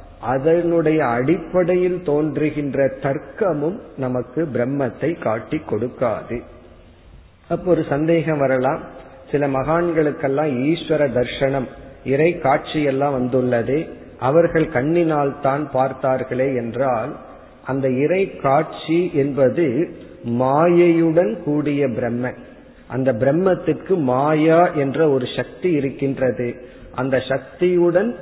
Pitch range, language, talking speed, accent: 130-160 Hz, Tamil, 80 wpm, native